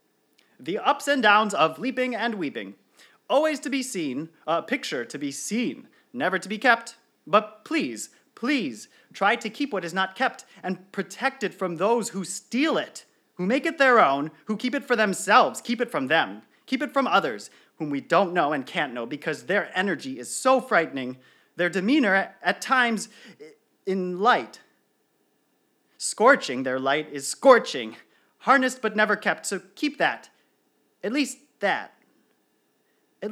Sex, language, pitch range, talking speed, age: male, English, 185-260 Hz, 165 wpm, 30-49